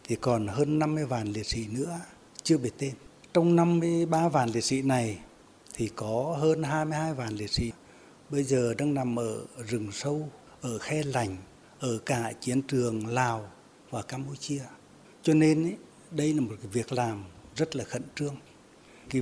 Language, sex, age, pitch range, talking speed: Vietnamese, male, 60-79, 115-150 Hz, 170 wpm